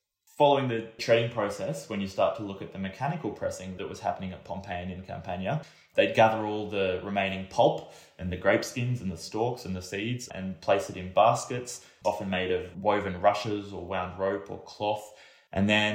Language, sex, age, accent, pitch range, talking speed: English, male, 20-39, Australian, 95-115 Hz, 205 wpm